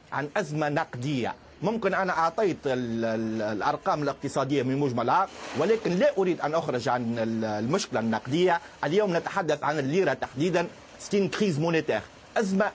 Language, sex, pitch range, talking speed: Arabic, male, 130-195 Hz, 135 wpm